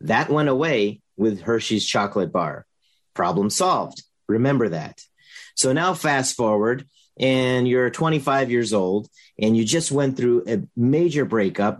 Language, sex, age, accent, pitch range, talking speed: English, male, 40-59, American, 110-140 Hz, 140 wpm